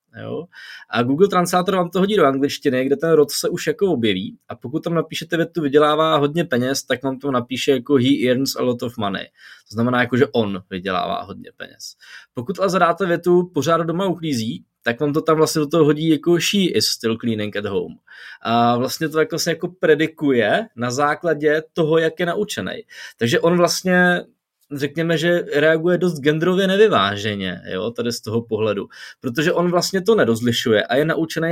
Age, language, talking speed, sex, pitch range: 20-39, Czech, 190 wpm, male, 130-170 Hz